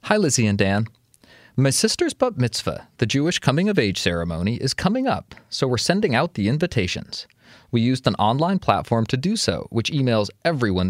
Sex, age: male, 30-49